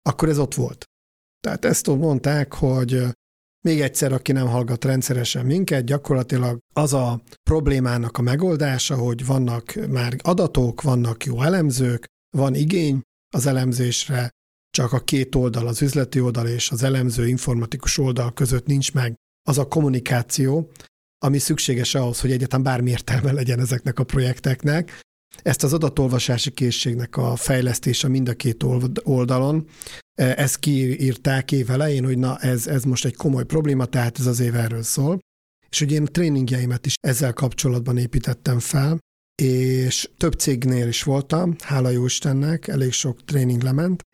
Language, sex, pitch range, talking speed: Hungarian, male, 125-145 Hz, 150 wpm